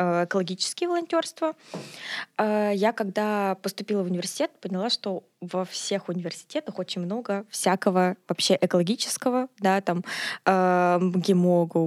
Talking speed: 100 wpm